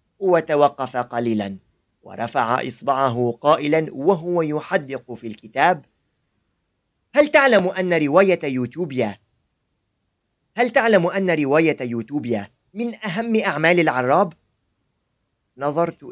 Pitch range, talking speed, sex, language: 120-180 Hz, 90 wpm, male, Arabic